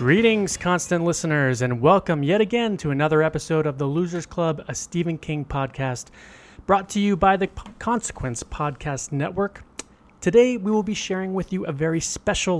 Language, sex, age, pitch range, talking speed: English, male, 30-49, 125-175 Hz, 170 wpm